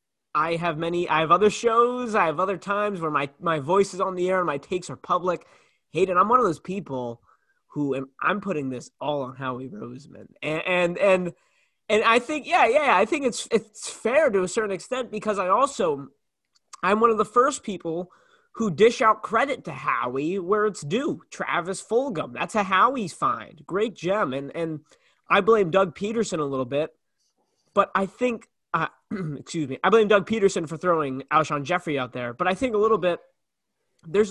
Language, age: English, 20-39